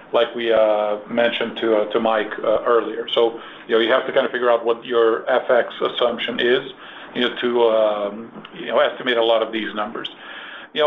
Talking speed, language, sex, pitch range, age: 210 wpm, Portuguese, male, 110-130 Hz, 50-69